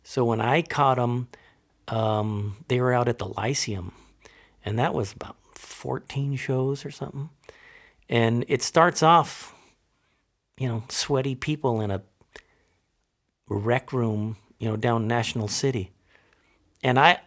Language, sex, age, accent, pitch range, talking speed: English, male, 50-69, American, 105-135 Hz, 135 wpm